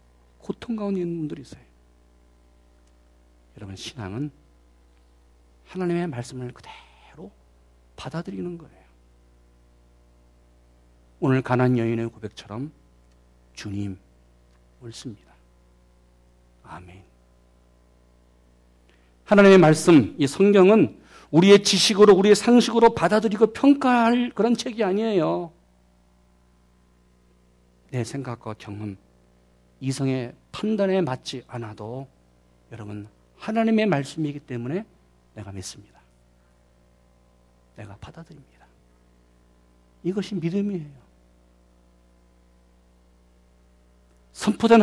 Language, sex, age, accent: Korean, male, 50-69, native